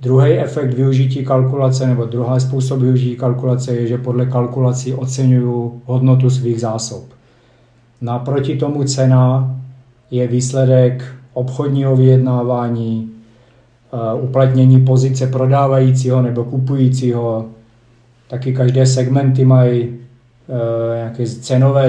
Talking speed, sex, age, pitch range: 95 wpm, male, 40-59, 120-130 Hz